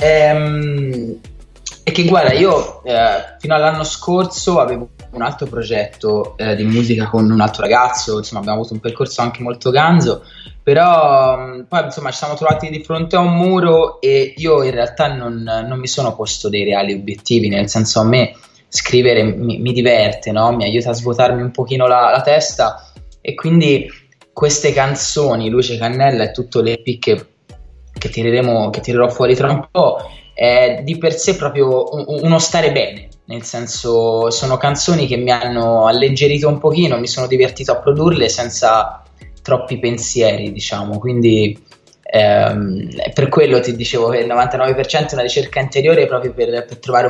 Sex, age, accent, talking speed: male, 20-39, native, 165 wpm